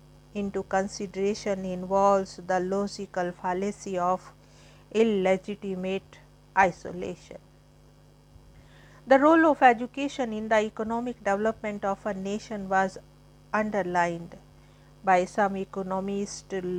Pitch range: 185-205 Hz